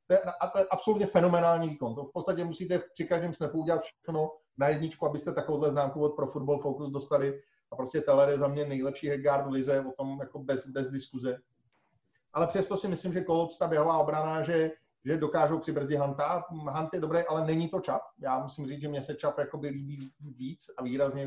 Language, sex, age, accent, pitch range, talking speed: Czech, male, 30-49, native, 135-155 Hz, 210 wpm